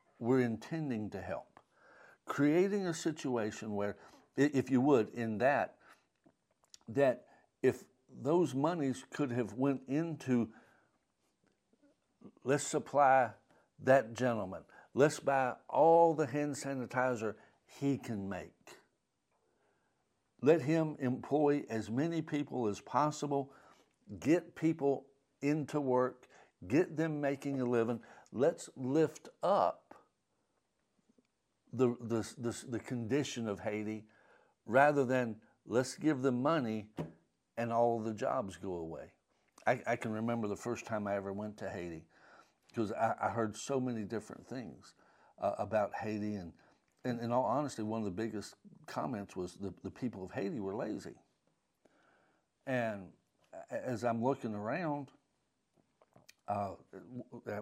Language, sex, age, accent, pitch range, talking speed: English, male, 60-79, American, 105-140 Hz, 125 wpm